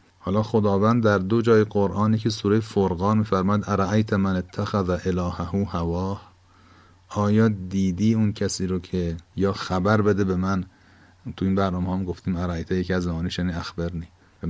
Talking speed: 160 wpm